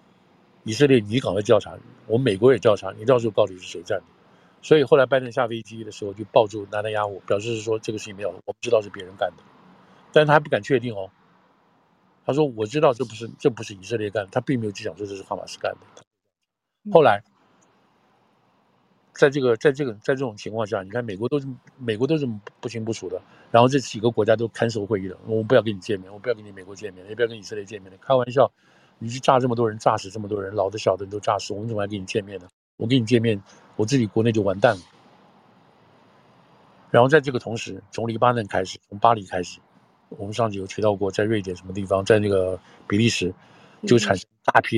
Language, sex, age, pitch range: Chinese, male, 50-69, 100-120 Hz